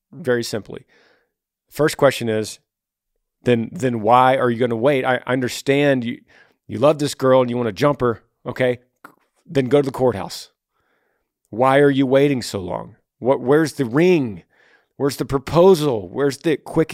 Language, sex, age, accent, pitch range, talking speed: English, male, 40-59, American, 105-150 Hz, 170 wpm